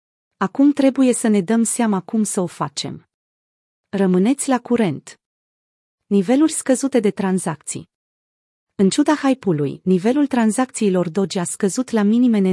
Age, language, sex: 30-49, Romanian, female